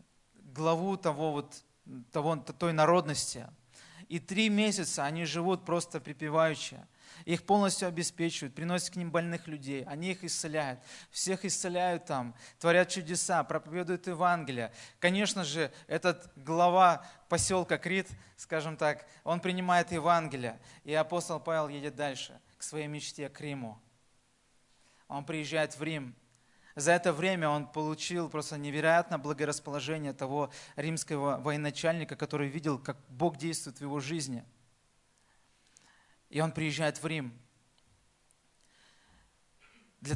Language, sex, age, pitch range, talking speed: Russian, male, 20-39, 135-170 Hz, 120 wpm